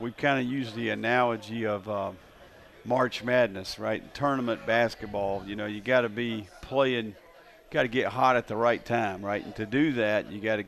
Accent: American